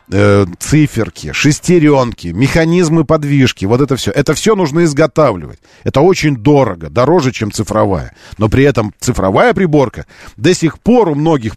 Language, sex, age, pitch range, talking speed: Russian, male, 40-59, 105-155 Hz, 145 wpm